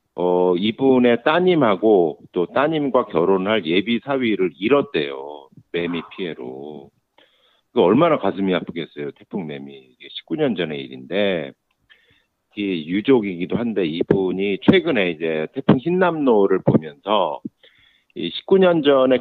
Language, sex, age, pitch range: Korean, male, 50-69, 85-135 Hz